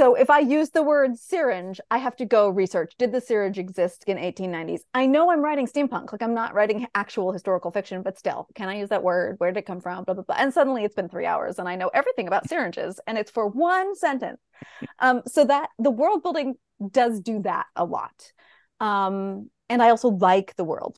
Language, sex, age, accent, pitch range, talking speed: English, female, 30-49, American, 185-250 Hz, 230 wpm